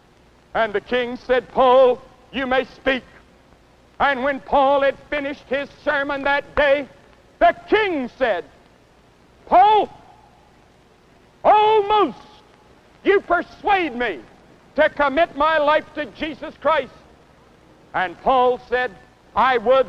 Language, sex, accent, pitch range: English, male, American, 260-330 Hz